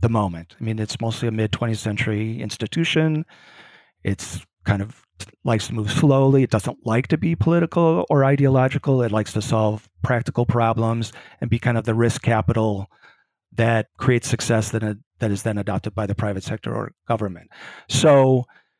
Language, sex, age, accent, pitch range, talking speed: English, male, 40-59, American, 110-130 Hz, 170 wpm